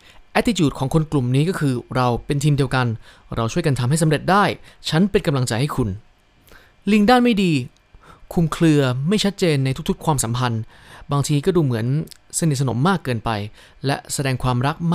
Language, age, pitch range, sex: Thai, 20-39, 125-170 Hz, male